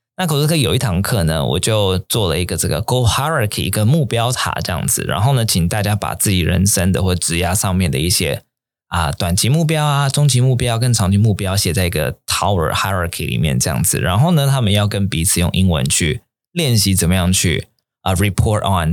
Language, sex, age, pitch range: Chinese, male, 20-39, 90-125 Hz